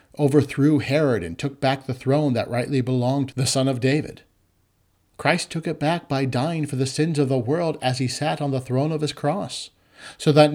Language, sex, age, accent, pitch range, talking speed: English, male, 40-59, American, 110-145 Hz, 215 wpm